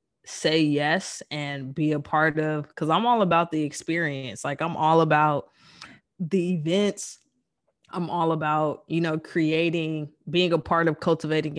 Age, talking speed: 20-39, 155 wpm